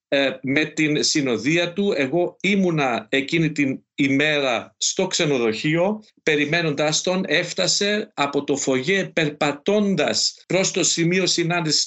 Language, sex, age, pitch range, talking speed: Greek, male, 50-69, 145-180 Hz, 110 wpm